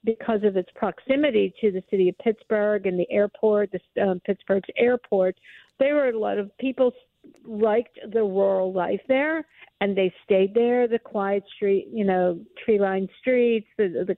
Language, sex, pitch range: English, female, 195-235 Hz